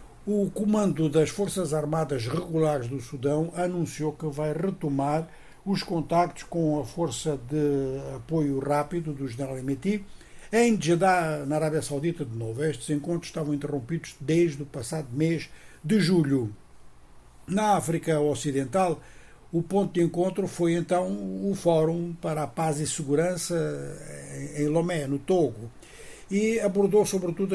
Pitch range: 145-175 Hz